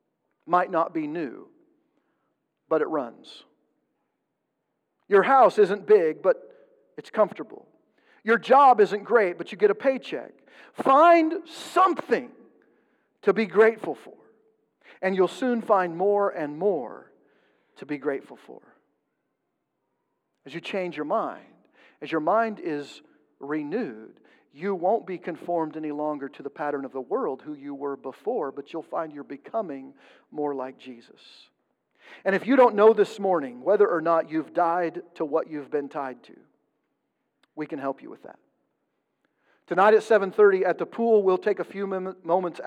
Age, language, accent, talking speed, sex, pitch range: 50-69, English, American, 155 wpm, male, 155-235 Hz